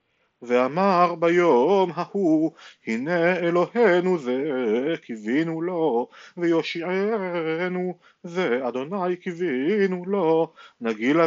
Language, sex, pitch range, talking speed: Hebrew, male, 150-185 Hz, 75 wpm